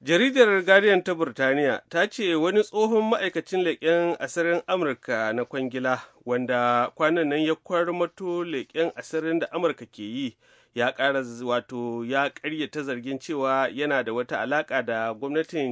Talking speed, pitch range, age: 155 wpm, 125-165 Hz, 30-49